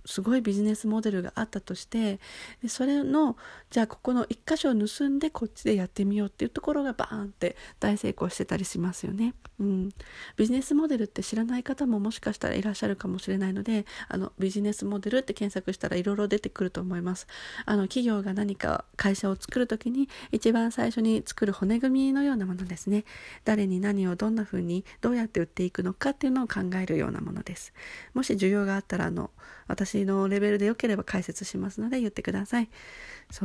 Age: 40-59